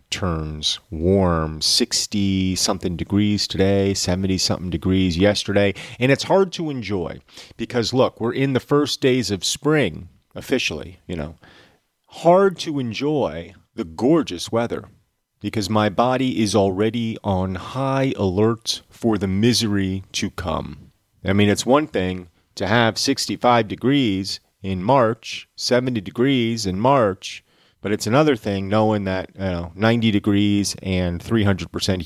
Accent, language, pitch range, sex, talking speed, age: American, English, 90-120 Hz, male, 135 wpm, 30-49